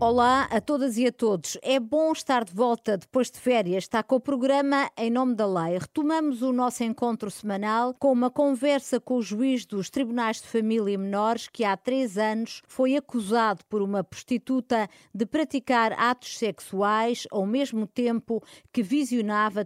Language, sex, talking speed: Portuguese, female, 175 wpm